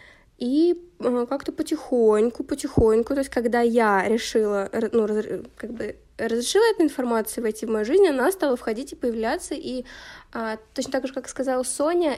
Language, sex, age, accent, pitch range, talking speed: Russian, female, 20-39, native, 220-255 Hz, 155 wpm